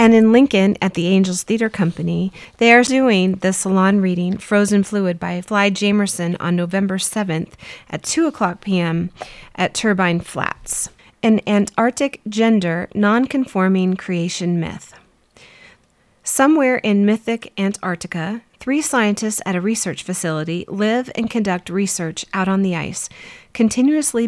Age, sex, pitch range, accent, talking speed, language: 30-49, female, 185-225 Hz, American, 135 wpm, English